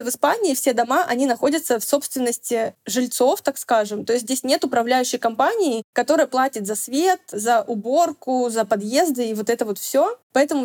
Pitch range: 230-280 Hz